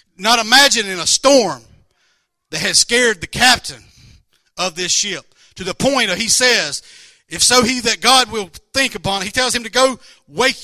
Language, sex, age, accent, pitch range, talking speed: English, male, 50-69, American, 180-245 Hz, 180 wpm